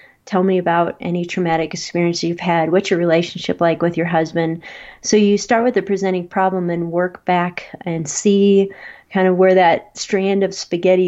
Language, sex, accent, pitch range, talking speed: English, female, American, 170-195 Hz, 185 wpm